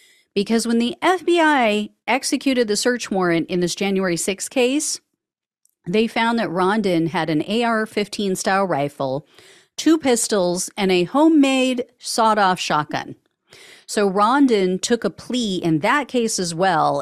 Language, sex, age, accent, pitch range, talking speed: English, female, 40-59, American, 170-230 Hz, 140 wpm